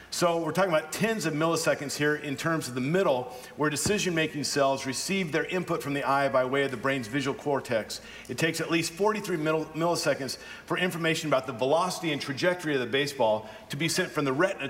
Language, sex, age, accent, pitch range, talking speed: English, male, 50-69, American, 145-185 Hz, 210 wpm